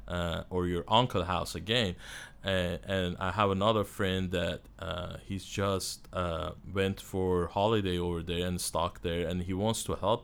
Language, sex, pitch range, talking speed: English, male, 90-105 Hz, 170 wpm